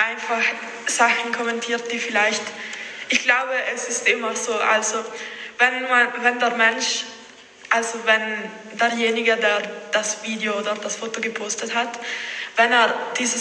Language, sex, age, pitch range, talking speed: German, female, 20-39, 210-230 Hz, 140 wpm